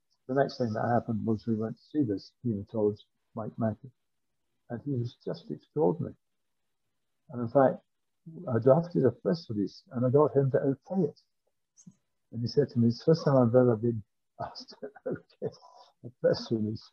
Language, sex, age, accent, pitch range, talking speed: English, male, 60-79, British, 105-135 Hz, 185 wpm